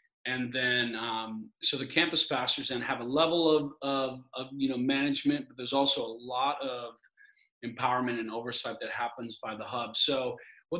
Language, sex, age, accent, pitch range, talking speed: English, male, 30-49, American, 120-140 Hz, 185 wpm